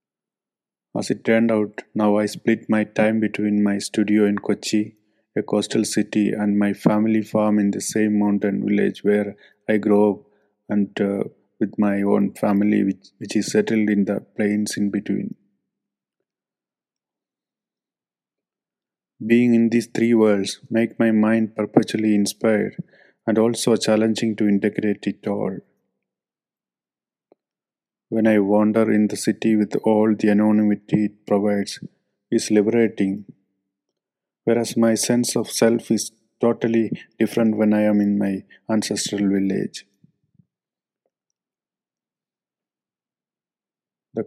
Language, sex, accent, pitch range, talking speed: English, male, Indian, 105-110 Hz, 125 wpm